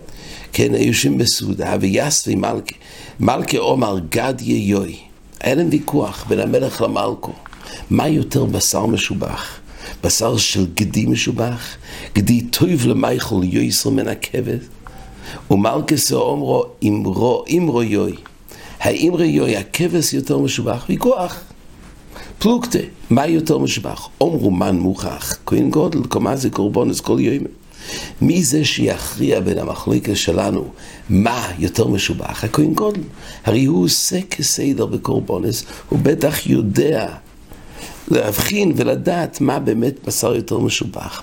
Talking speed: 115 wpm